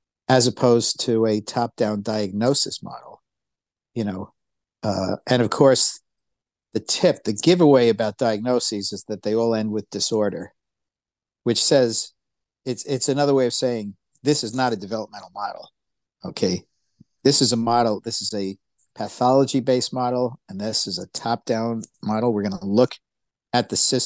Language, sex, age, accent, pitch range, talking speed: English, male, 50-69, American, 110-135 Hz, 155 wpm